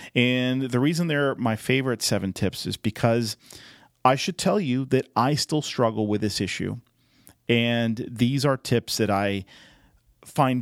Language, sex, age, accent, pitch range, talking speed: English, male, 40-59, American, 100-125 Hz, 160 wpm